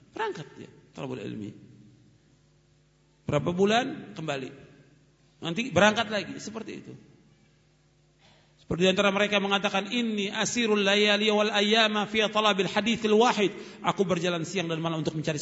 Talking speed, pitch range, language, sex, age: 125 wpm, 165-235 Hz, Indonesian, male, 50-69